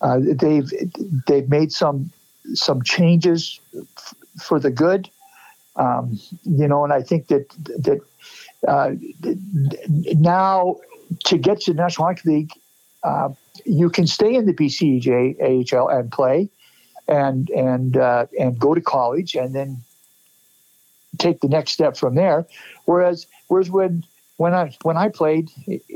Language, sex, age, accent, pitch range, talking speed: English, male, 60-79, American, 140-175 Hz, 140 wpm